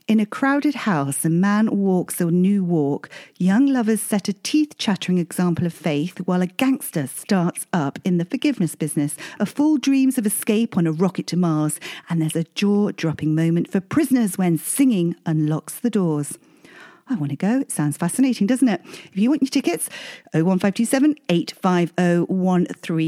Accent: British